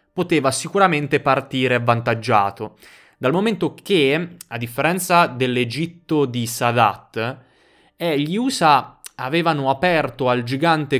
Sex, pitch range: male, 115-150 Hz